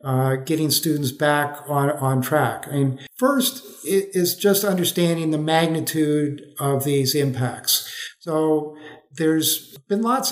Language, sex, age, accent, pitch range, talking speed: English, male, 50-69, American, 155-185 Hz, 130 wpm